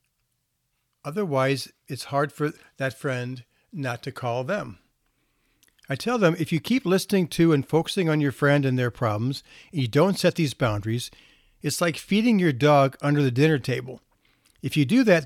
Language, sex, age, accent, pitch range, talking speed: English, male, 60-79, American, 125-155 Hz, 175 wpm